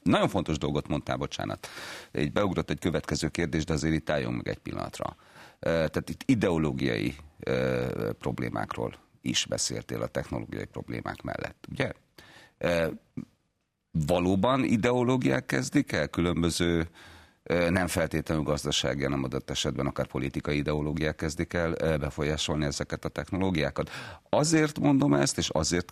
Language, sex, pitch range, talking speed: Hungarian, male, 75-100 Hz, 120 wpm